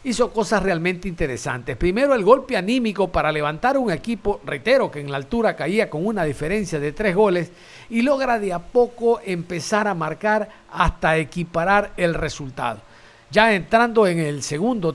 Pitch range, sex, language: 160-225 Hz, male, Spanish